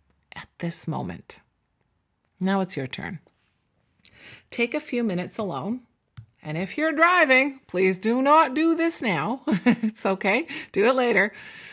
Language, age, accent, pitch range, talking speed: English, 40-59, American, 155-220 Hz, 140 wpm